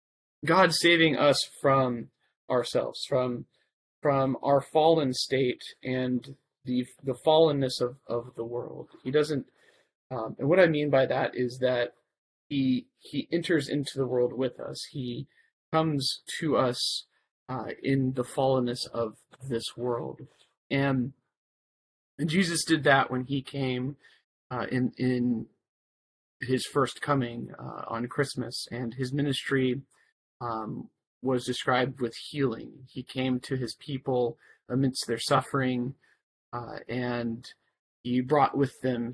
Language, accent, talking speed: English, American, 135 wpm